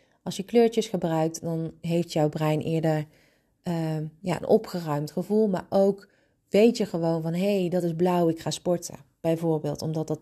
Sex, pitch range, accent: female, 160-205 Hz, Dutch